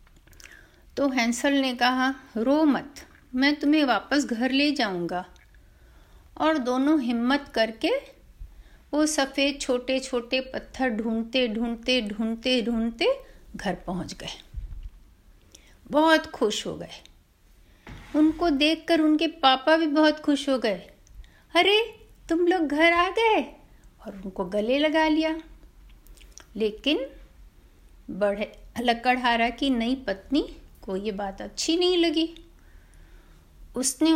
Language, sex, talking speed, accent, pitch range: Hindi, female, 115 wpm, native, 220-305 Hz